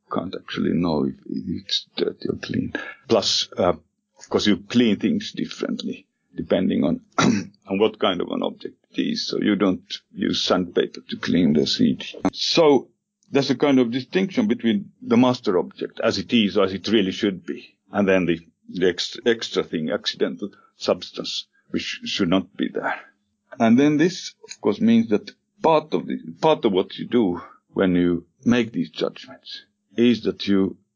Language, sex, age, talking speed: English, male, 50-69, 175 wpm